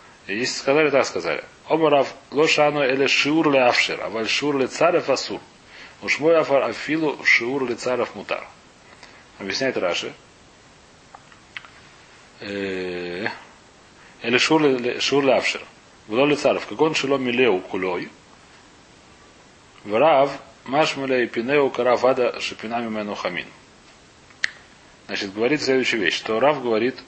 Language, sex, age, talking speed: Russian, male, 40-59, 95 wpm